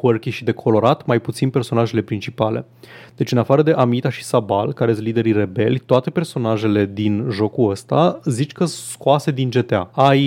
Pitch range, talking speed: 110-135 Hz, 175 wpm